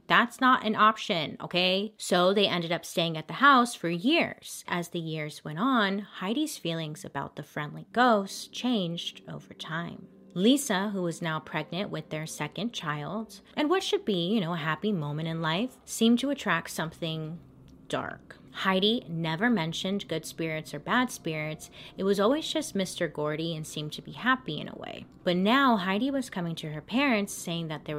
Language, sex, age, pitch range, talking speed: English, female, 30-49, 160-210 Hz, 185 wpm